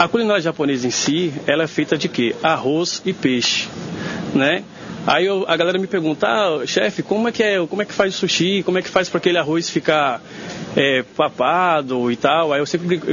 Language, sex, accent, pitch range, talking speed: Portuguese, male, Brazilian, 140-190 Hz, 215 wpm